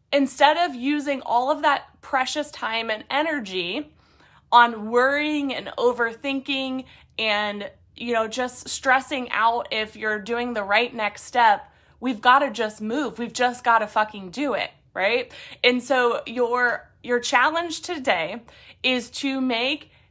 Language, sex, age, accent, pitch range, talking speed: English, female, 20-39, American, 210-265 Hz, 145 wpm